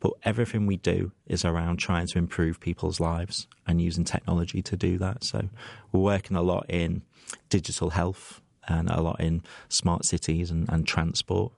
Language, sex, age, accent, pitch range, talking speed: English, male, 30-49, British, 85-100 Hz, 175 wpm